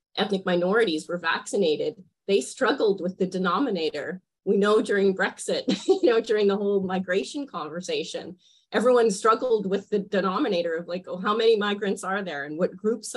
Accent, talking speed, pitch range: American, 165 wpm, 170-220 Hz